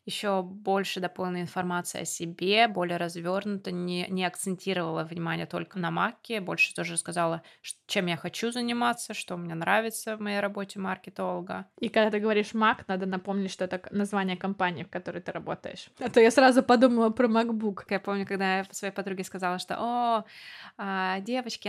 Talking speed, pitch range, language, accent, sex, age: 170 wpm, 190-230 Hz, Russian, native, female, 20-39